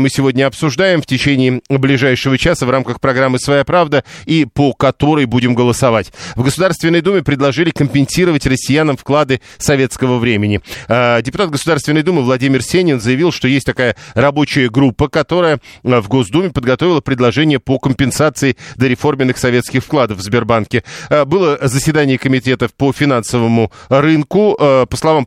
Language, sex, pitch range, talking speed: Russian, male, 125-155 Hz, 135 wpm